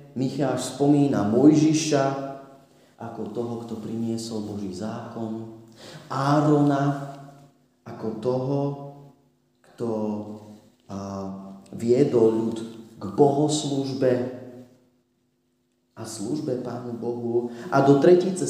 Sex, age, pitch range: male, 40-59, 110-135 Hz